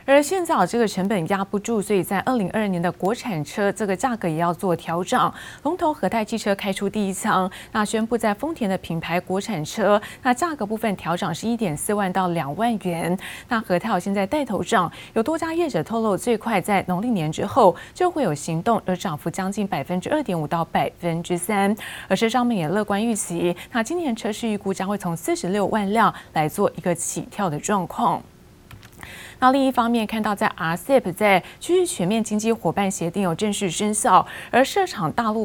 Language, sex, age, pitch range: Chinese, female, 20-39, 185-235 Hz